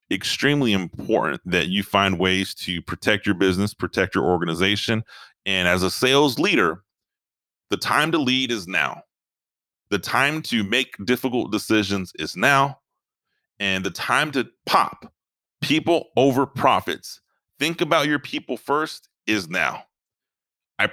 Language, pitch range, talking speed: English, 95-135 Hz, 140 wpm